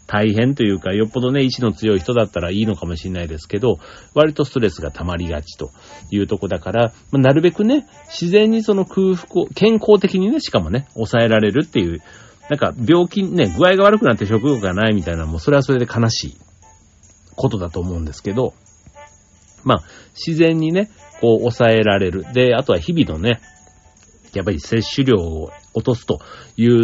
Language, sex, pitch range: Japanese, male, 95-130 Hz